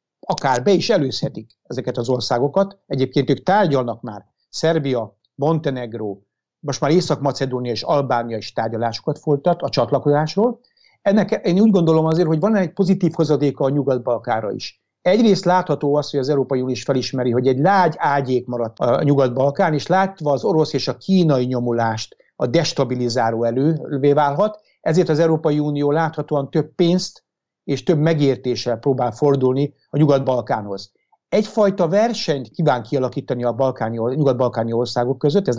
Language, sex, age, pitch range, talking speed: Hungarian, male, 60-79, 125-165 Hz, 150 wpm